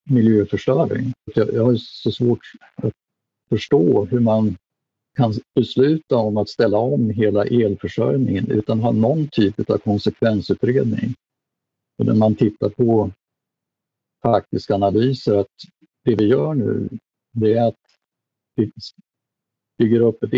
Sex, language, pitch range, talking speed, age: male, Swedish, 100-120 Hz, 125 wpm, 50-69